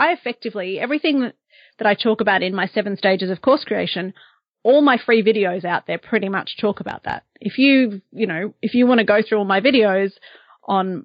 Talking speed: 210 wpm